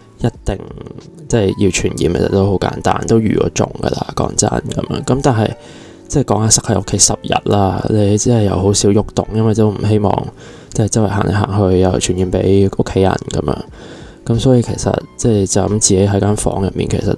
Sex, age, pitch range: male, 20-39, 95-110 Hz